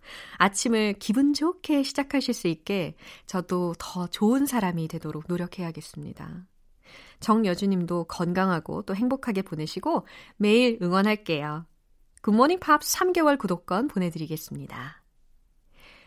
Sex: female